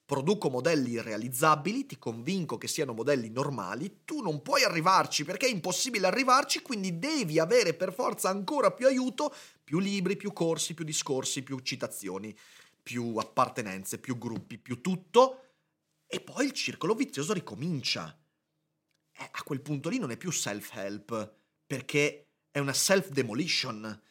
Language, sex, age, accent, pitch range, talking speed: Italian, male, 30-49, native, 125-195 Hz, 145 wpm